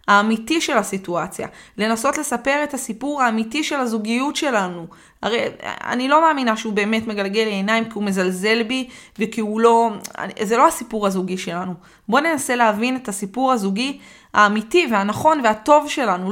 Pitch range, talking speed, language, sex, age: 205-260 Hz, 155 wpm, Hebrew, female, 20-39